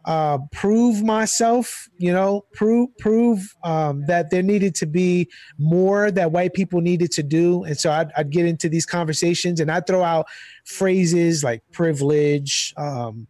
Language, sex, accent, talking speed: English, male, American, 165 wpm